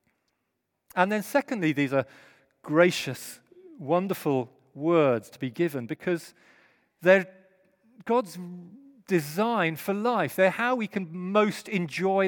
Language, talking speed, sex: English, 110 wpm, male